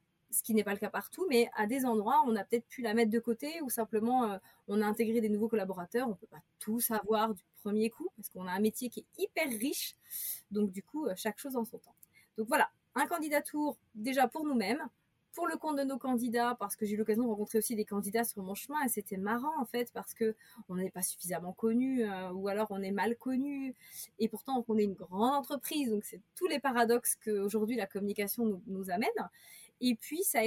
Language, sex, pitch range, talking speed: French, female, 210-250 Hz, 240 wpm